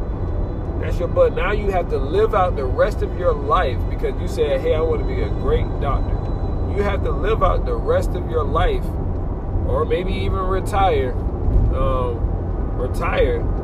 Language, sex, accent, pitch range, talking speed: English, male, American, 90-100 Hz, 180 wpm